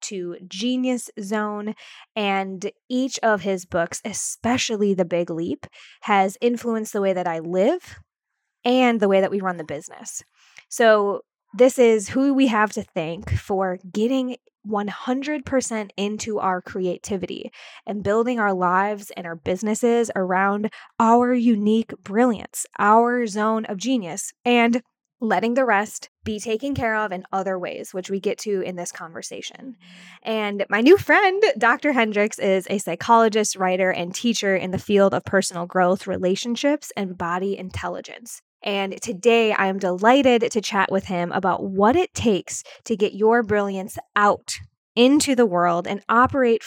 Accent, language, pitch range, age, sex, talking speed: American, English, 190-235 Hz, 20-39, female, 155 wpm